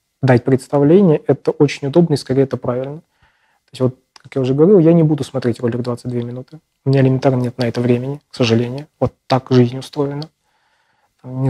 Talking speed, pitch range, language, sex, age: 190 wpm, 125-150 Hz, Russian, male, 20-39